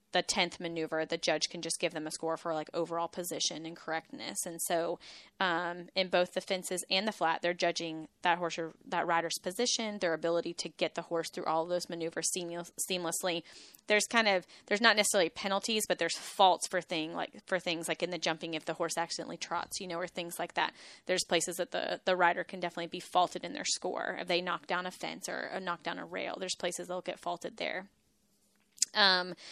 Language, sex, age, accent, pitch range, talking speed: English, female, 10-29, American, 170-190 Hz, 225 wpm